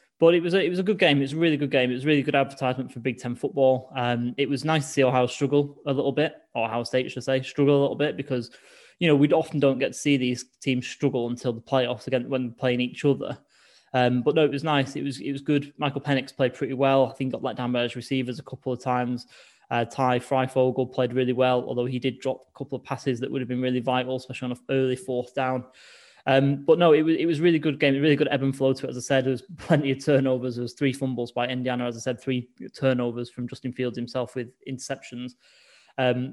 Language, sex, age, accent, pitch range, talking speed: English, male, 10-29, British, 125-140 Hz, 275 wpm